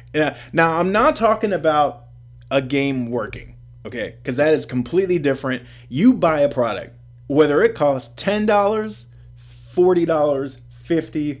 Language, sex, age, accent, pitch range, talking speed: English, male, 20-39, American, 120-160 Hz, 125 wpm